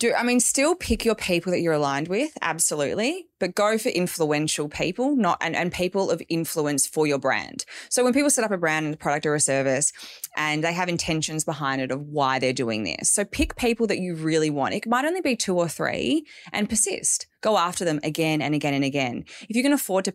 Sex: female